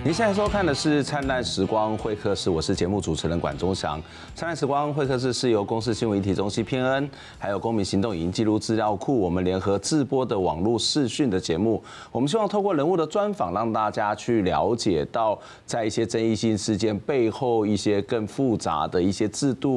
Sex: male